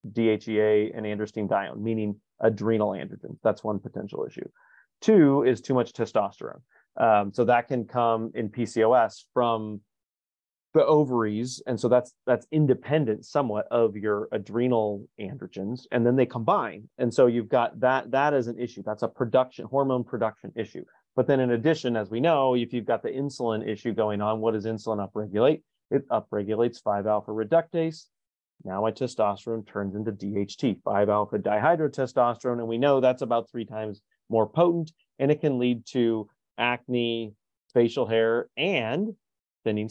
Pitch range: 105-125 Hz